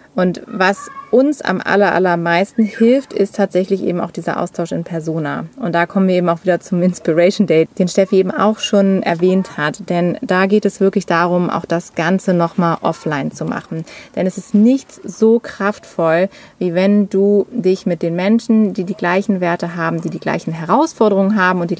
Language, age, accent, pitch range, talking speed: German, 30-49, German, 175-215 Hz, 195 wpm